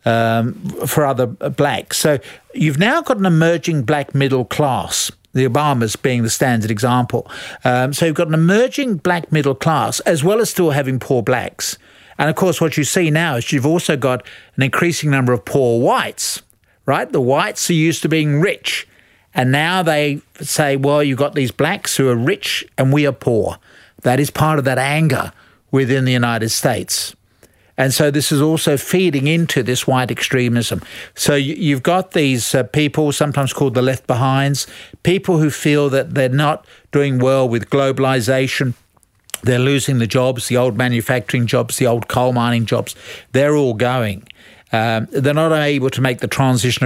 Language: English